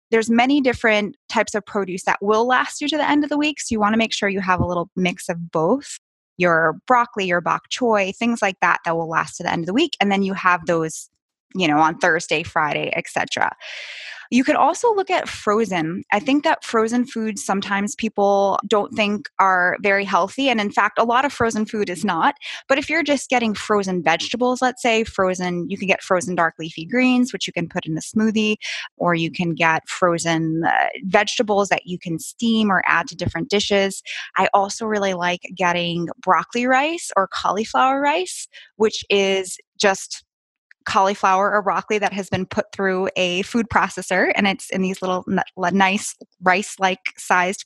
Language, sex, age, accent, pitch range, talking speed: English, female, 20-39, American, 185-230 Hz, 200 wpm